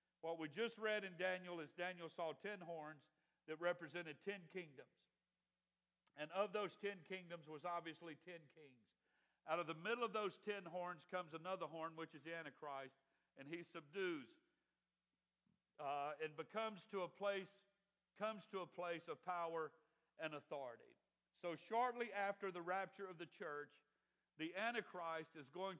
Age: 50-69